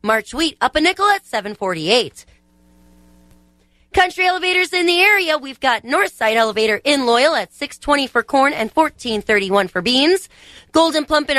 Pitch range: 195-295 Hz